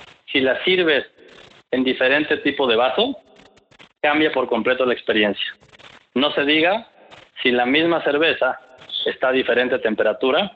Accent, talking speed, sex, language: Mexican, 135 wpm, male, Spanish